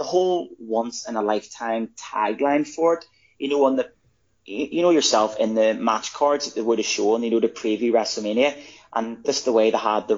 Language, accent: English, British